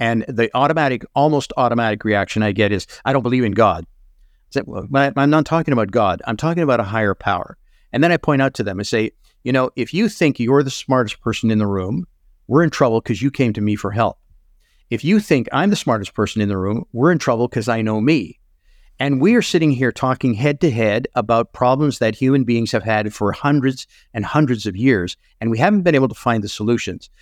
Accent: American